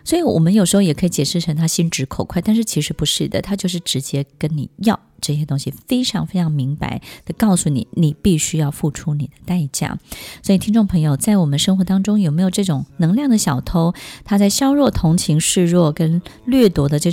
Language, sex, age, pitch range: Chinese, female, 20-39, 145-180 Hz